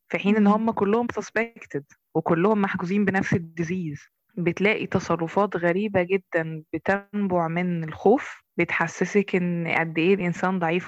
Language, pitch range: Arabic, 175-205 Hz